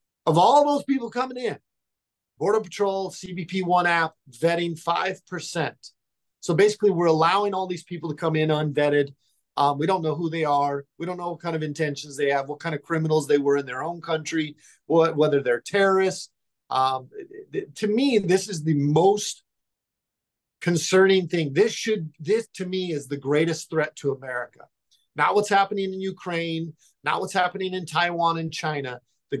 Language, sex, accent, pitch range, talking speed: English, male, American, 150-185 Hz, 180 wpm